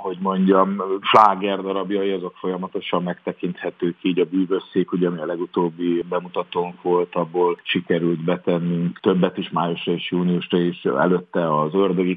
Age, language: 50-69, Hungarian